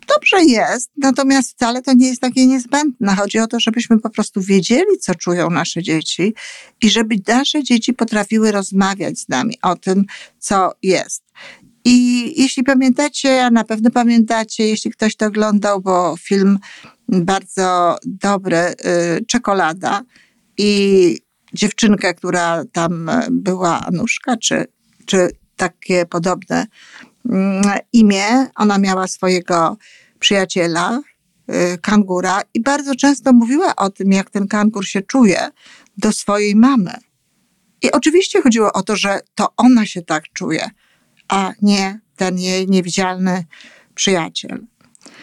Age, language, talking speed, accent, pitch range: 50-69, Polish, 125 wpm, native, 185-245 Hz